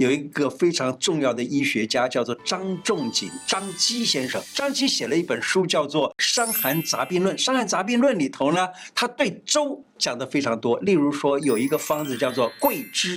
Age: 50-69